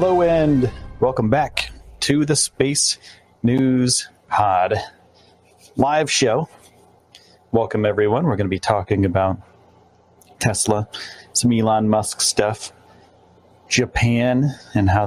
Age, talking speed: 30-49, 110 wpm